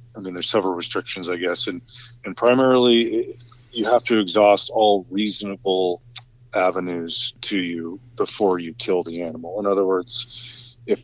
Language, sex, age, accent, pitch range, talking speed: English, male, 40-59, American, 95-120 Hz, 160 wpm